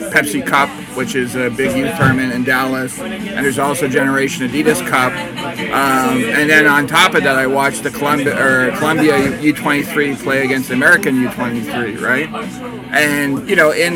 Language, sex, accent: English, male, American